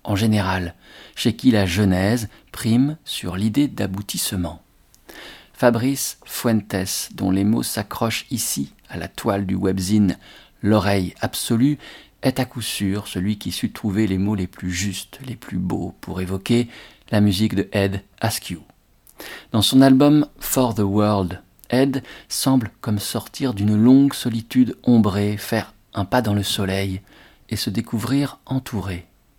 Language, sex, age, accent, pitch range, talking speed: French, male, 50-69, French, 100-125 Hz, 145 wpm